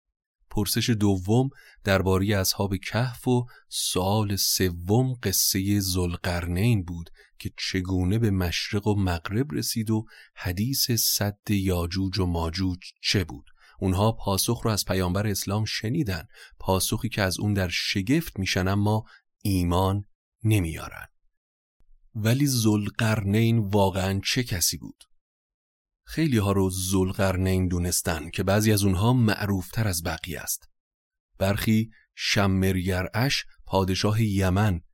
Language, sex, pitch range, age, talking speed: Persian, male, 95-110 Hz, 30-49, 115 wpm